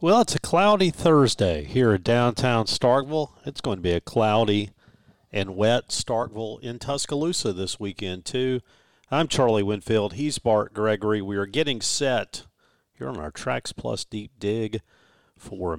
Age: 50-69